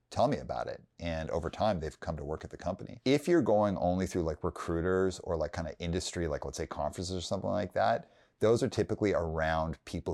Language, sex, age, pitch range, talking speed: English, male, 30-49, 80-100 Hz, 230 wpm